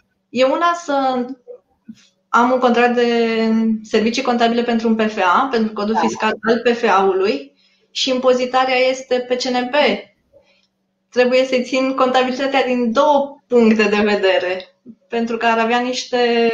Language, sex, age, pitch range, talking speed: Romanian, female, 20-39, 210-255 Hz, 130 wpm